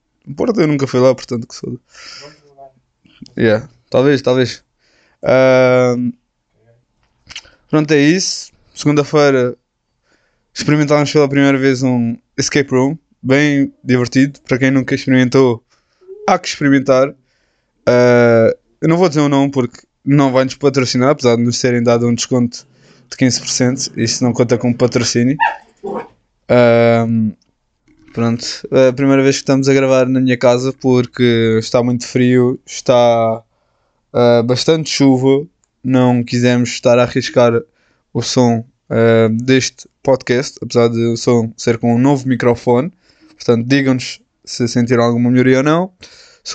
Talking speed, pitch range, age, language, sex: 140 wpm, 120-140 Hz, 20-39, Portuguese, male